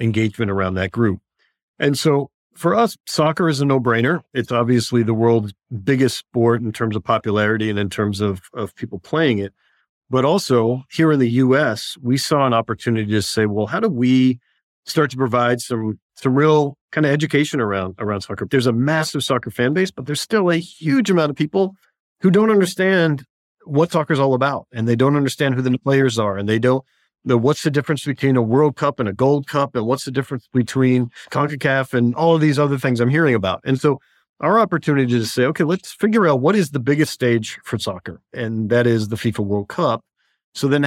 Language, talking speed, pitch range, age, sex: English, 210 wpm, 115-150 Hz, 40-59, male